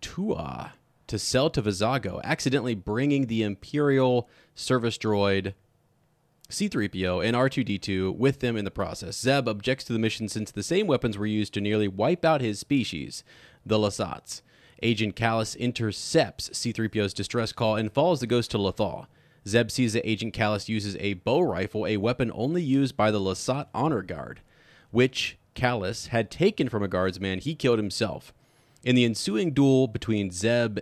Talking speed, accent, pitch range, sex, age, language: 160 wpm, American, 100-130 Hz, male, 30-49, English